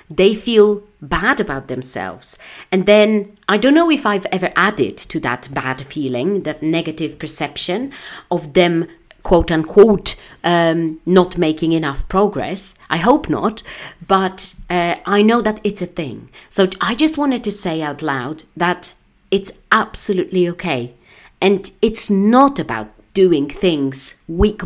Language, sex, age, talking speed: English, female, 40-59, 140 wpm